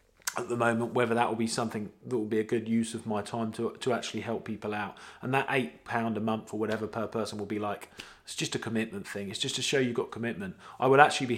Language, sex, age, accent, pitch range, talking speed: English, male, 20-39, British, 110-135 Hz, 275 wpm